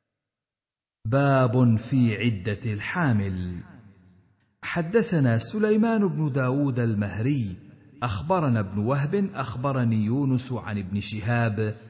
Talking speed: 85 wpm